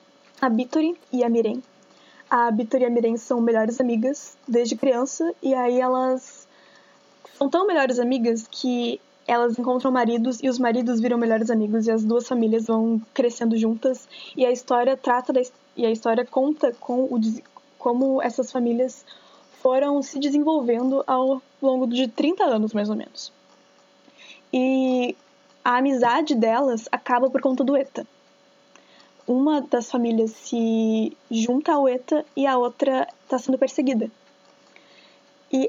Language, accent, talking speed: Portuguese, Brazilian, 135 wpm